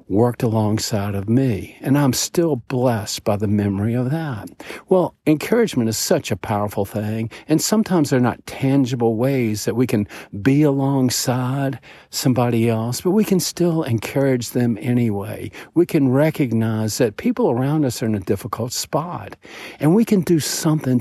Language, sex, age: English, male, 60-79